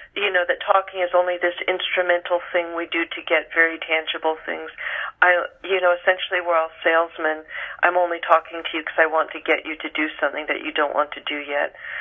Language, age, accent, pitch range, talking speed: English, 50-69, American, 175-235 Hz, 220 wpm